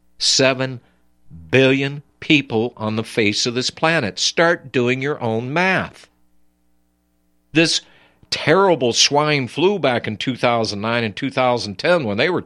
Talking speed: 125 wpm